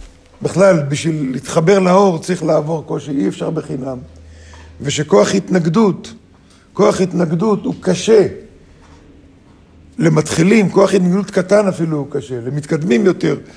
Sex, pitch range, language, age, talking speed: male, 145-185 Hz, Hebrew, 50-69, 110 wpm